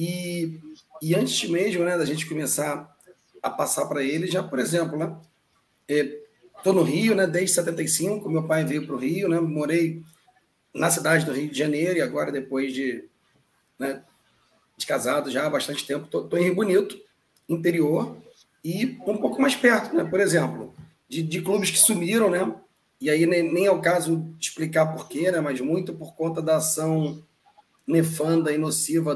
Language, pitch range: Portuguese, 155-180 Hz